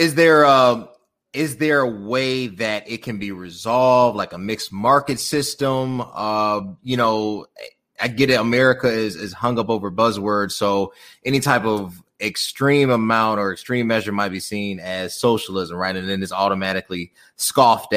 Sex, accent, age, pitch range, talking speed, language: male, American, 30-49, 105-145 Hz, 165 wpm, English